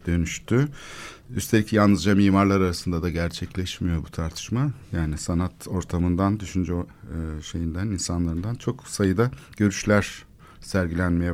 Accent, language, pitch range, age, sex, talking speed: native, Turkish, 85-120 Hz, 60-79, male, 105 wpm